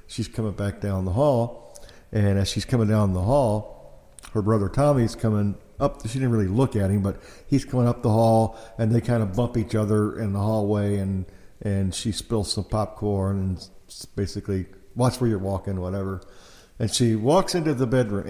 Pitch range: 100-115 Hz